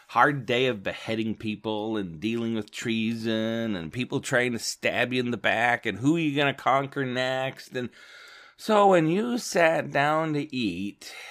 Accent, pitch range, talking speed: American, 110-140 Hz, 180 wpm